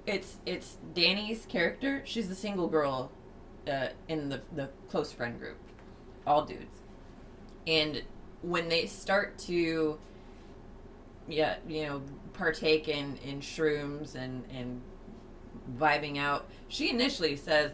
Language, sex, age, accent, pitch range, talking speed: English, female, 20-39, American, 140-170 Hz, 120 wpm